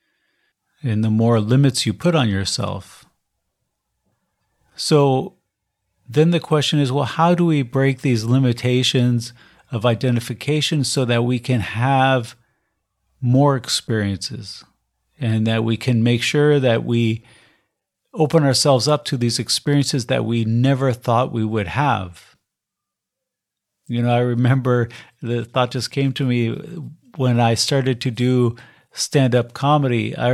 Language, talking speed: English, 135 wpm